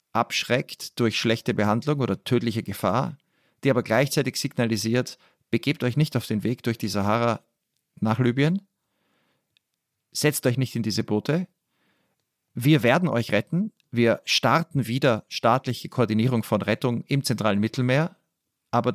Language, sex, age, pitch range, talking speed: German, male, 40-59, 105-140 Hz, 135 wpm